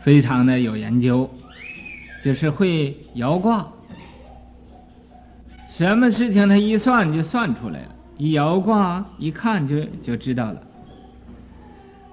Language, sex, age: Chinese, male, 50-69